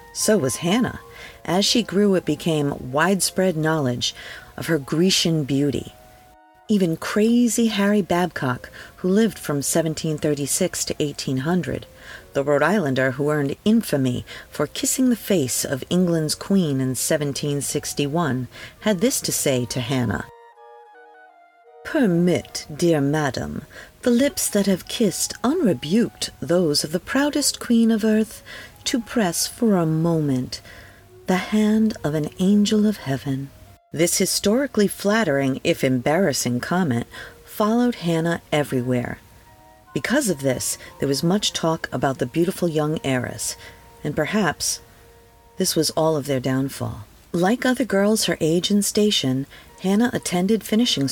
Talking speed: 130 wpm